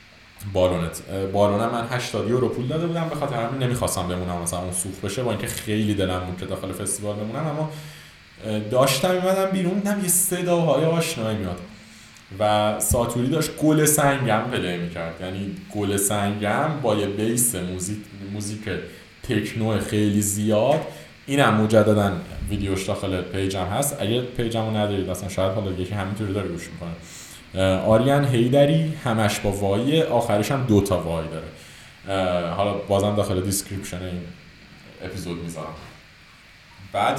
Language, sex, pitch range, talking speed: Persian, male, 100-135 Hz, 140 wpm